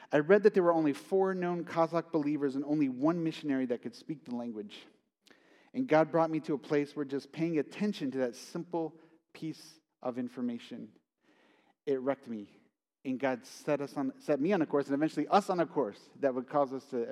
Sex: male